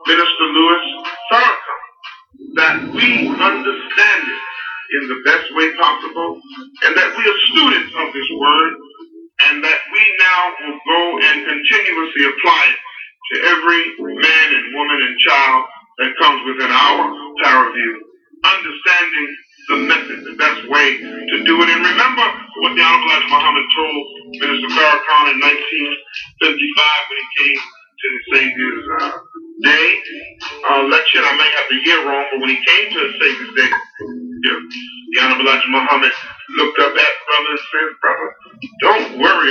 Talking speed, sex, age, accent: 150 wpm, male, 40-59, American